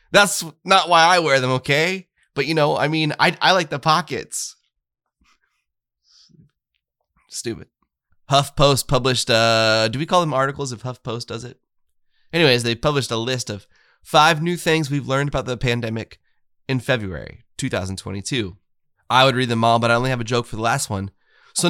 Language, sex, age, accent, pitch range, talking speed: English, male, 20-39, American, 110-150 Hz, 175 wpm